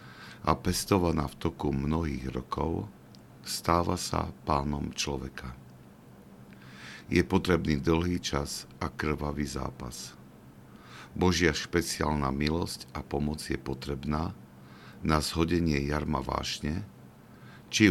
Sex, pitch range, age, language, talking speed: male, 65-85 Hz, 50-69, Slovak, 95 wpm